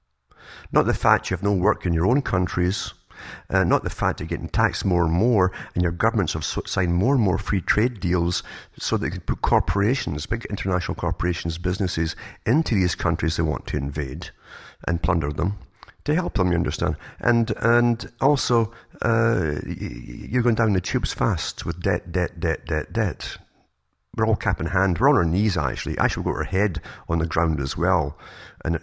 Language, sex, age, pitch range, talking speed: English, male, 50-69, 85-110 Hz, 195 wpm